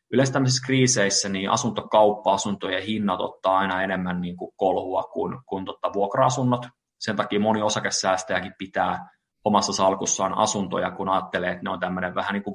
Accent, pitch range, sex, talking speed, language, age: native, 95-120 Hz, male, 135 wpm, Finnish, 30-49